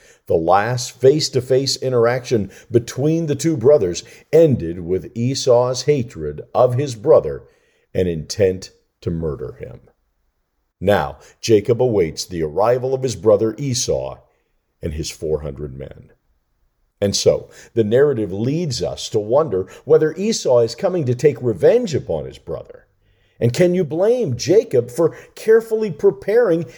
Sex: male